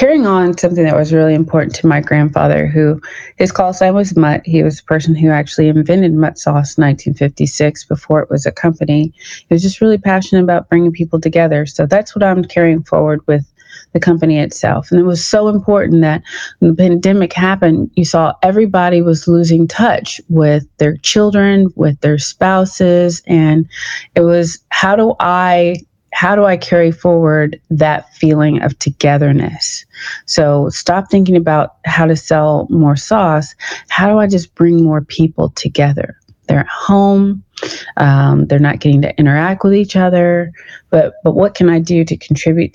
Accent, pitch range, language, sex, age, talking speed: American, 150-180 Hz, English, female, 30-49, 175 wpm